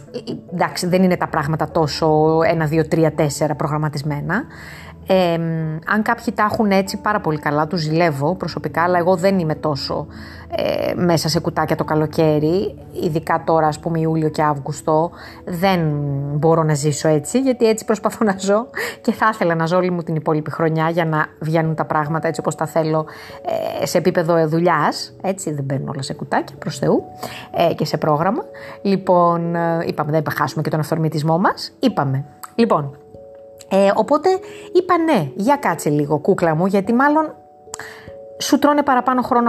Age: 20-39